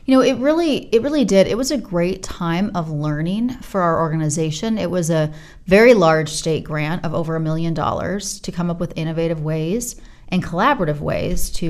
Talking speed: 200 wpm